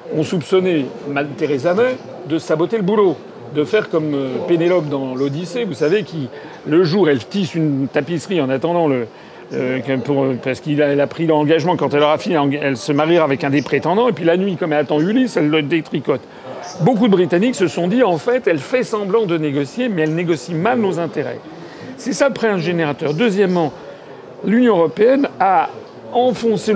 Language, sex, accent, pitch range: French, male, French, 145-195 Hz